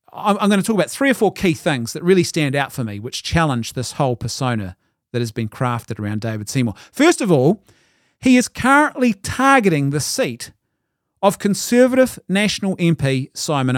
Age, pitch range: 30-49, 130-190 Hz